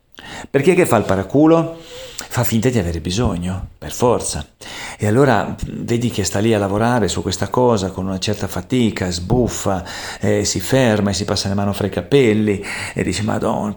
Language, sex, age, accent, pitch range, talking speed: Italian, male, 50-69, native, 95-130 Hz, 185 wpm